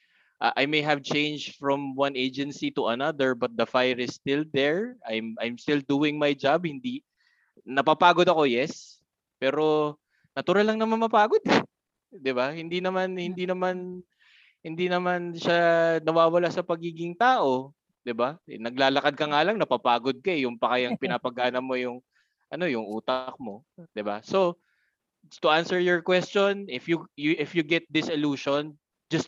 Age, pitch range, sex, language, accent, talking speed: 20-39, 125-170 Hz, male, Filipino, native, 160 wpm